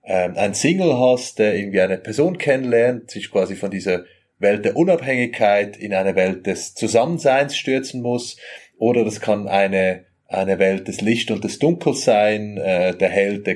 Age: 30-49